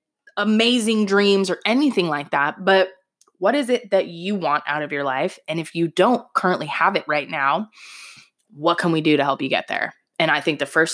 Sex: female